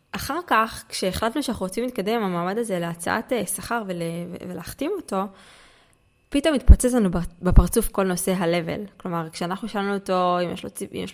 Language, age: Hebrew, 20-39